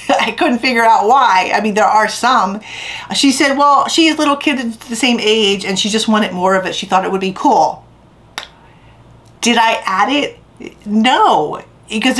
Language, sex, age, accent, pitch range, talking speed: English, female, 40-59, American, 180-230 Hz, 190 wpm